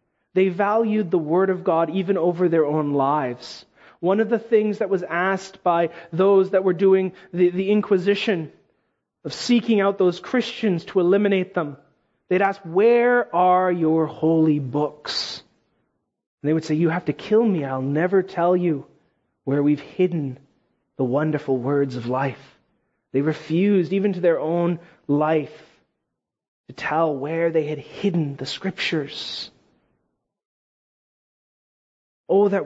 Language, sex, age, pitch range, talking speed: English, male, 30-49, 160-215 Hz, 145 wpm